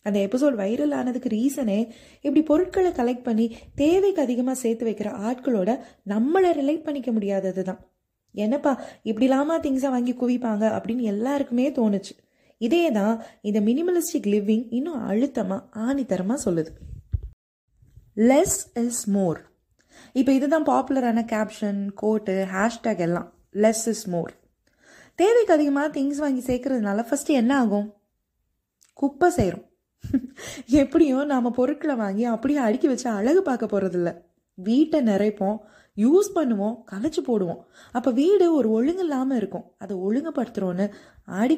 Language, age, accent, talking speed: Tamil, 20-39, native, 120 wpm